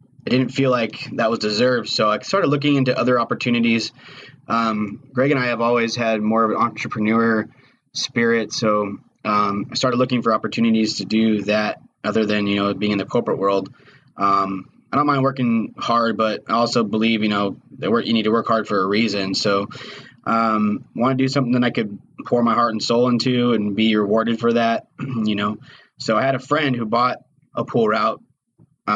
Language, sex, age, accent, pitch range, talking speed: English, male, 20-39, American, 105-120 Hz, 205 wpm